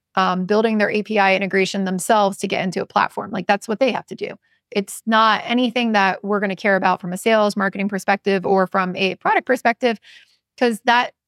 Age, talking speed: 20-39, 205 wpm